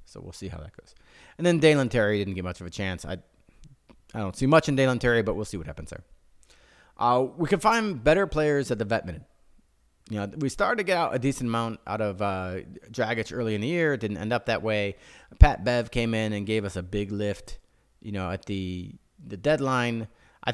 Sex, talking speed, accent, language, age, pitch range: male, 235 wpm, American, English, 30-49, 100-125 Hz